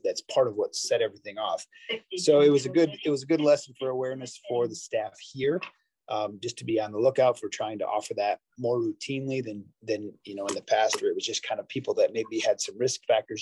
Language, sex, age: English, male, 30-49